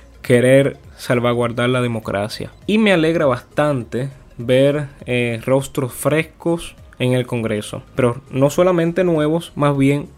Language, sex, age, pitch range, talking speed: Spanish, male, 20-39, 120-150 Hz, 125 wpm